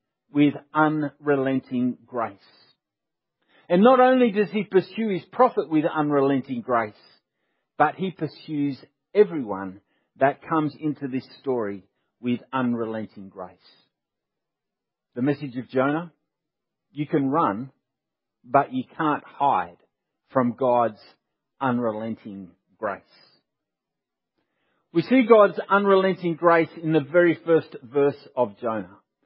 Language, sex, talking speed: English, male, 110 wpm